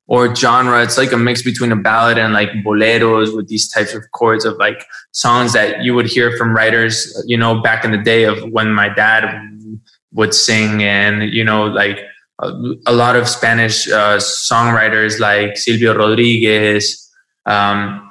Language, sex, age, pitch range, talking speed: English, male, 20-39, 115-145 Hz, 175 wpm